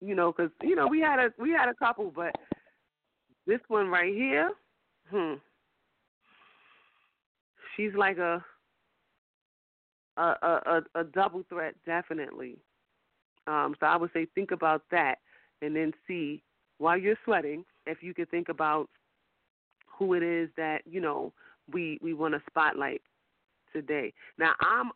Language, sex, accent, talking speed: English, female, American, 145 wpm